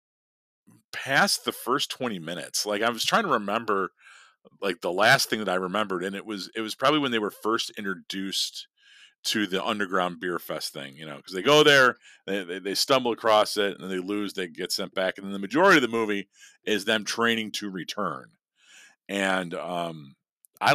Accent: American